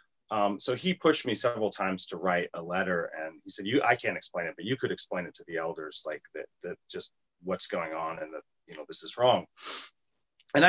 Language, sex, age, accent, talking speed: English, male, 30-49, American, 235 wpm